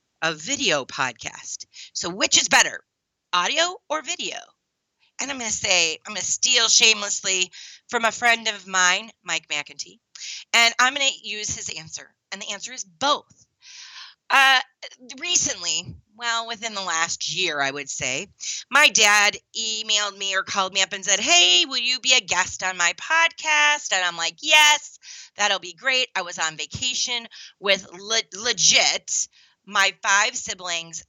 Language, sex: English, female